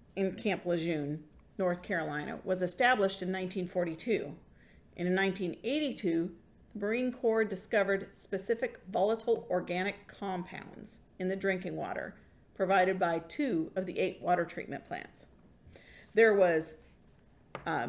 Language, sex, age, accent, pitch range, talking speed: English, female, 40-59, American, 185-230 Hz, 115 wpm